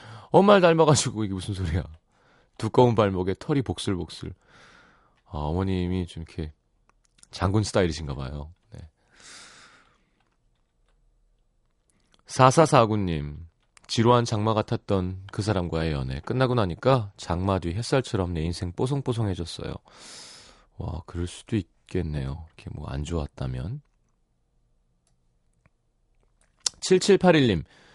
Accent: native